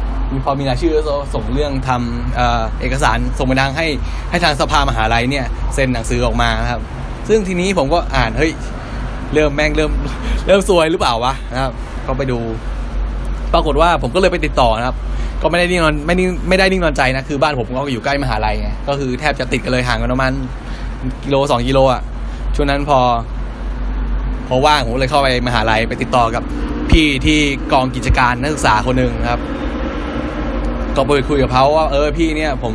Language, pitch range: Thai, 120-145 Hz